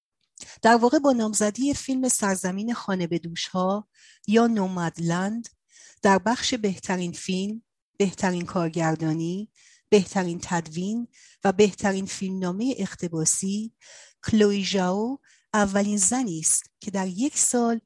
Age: 40-59